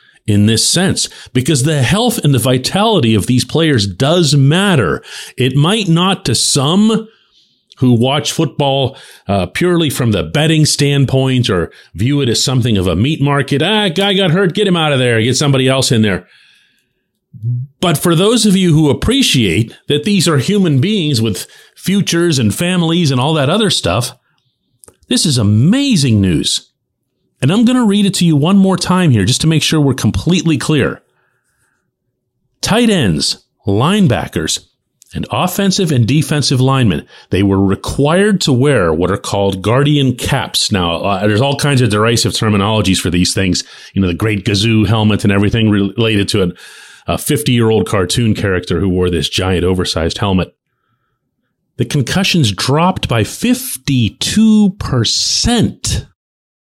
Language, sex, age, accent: English, male, 40-59, American